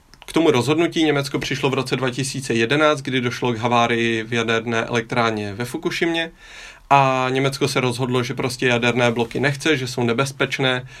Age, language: 30-49, Czech